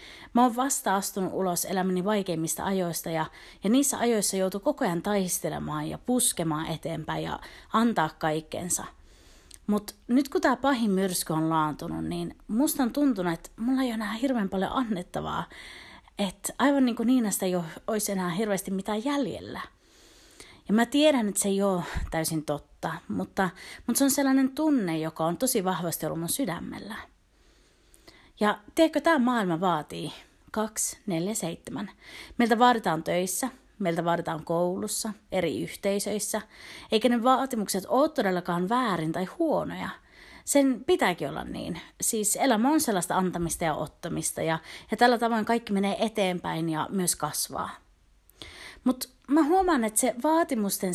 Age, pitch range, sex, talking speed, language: 30-49, 175-250 Hz, female, 145 wpm, Finnish